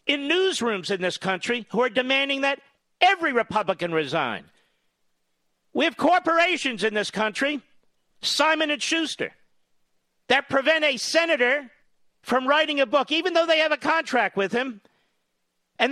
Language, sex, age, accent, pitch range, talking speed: English, male, 50-69, American, 240-320 Hz, 145 wpm